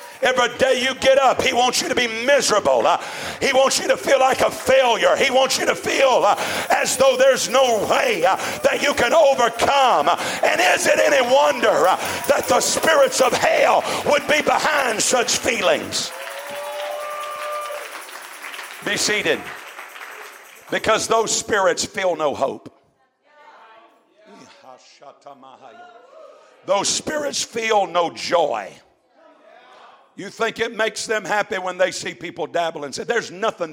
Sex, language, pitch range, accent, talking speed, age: male, English, 230-295 Hz, American, 140 wpm, 50-69